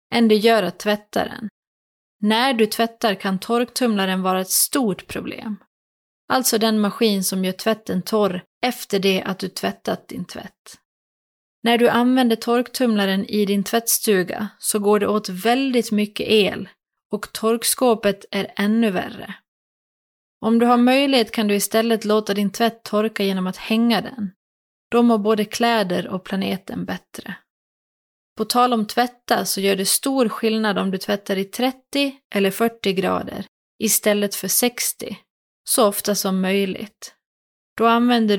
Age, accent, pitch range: 30-49, native, 200-235 Hz